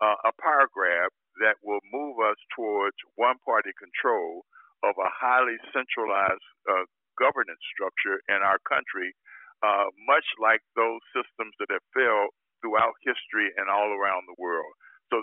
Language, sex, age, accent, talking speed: English, male, 60-79, American, 150 wpm